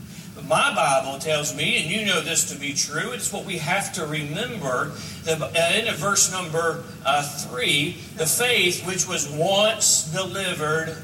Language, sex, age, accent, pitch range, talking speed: English, male, 40-59, American, 155-195 Hz, 145 wpm